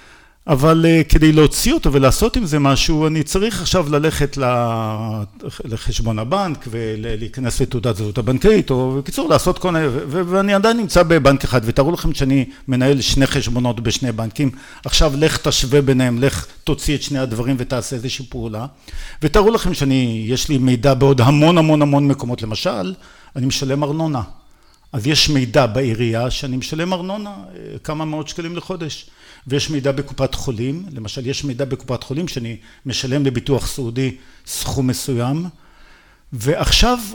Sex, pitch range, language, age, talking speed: male, 125-155 Hz, Hebrew, 50-69, 145 wpm